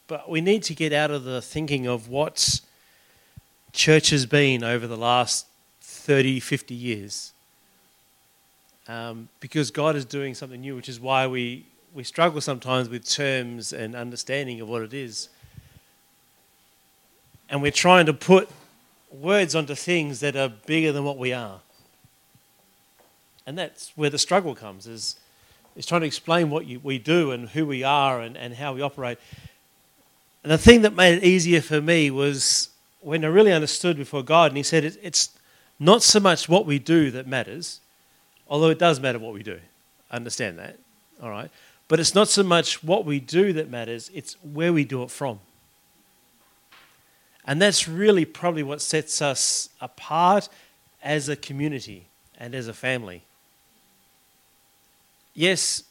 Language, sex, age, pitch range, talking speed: English, male, 40-59, 125-160 Hz, 165 wpm